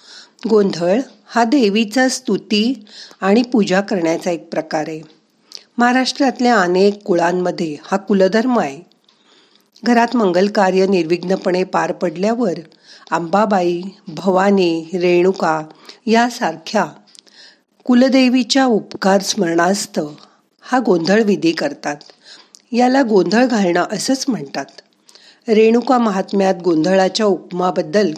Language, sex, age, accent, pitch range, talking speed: Marathi, female, 50-69, native, 170-225 Hz, 90 wpm